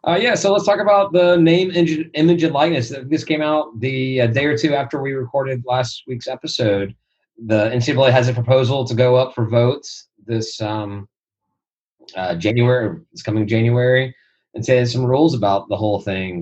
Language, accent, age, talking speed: English, American, 30-49, 185 wpm